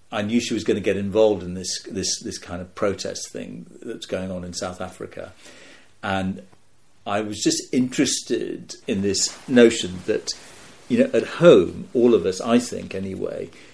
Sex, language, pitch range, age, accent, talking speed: male, English, 90-105 Hz, 50-69, British, 180 wpm